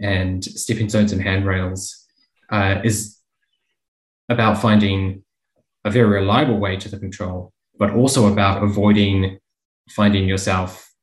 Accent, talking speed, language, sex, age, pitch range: Australian, 120 wpm, English, male, 20-39, 95-105 Hz